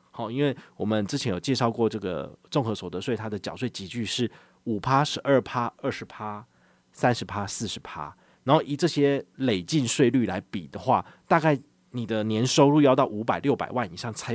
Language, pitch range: Chinese, 105-145 Hz